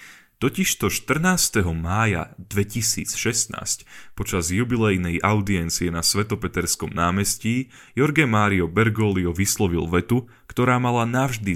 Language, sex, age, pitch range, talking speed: Slovak, male, 10-29, 90-115 Hz, 95 wpm